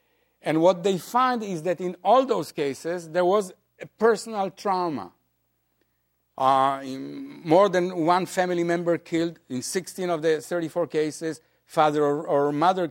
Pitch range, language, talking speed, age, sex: 155-195 Hz, English, 150 wpm, 50-69, male